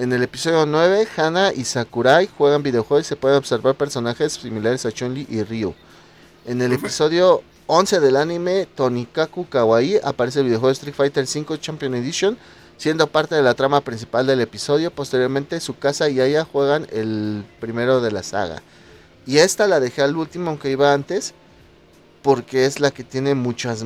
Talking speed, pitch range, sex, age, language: 175 wpm, 125-150 Hz, male, 30-49, Spanish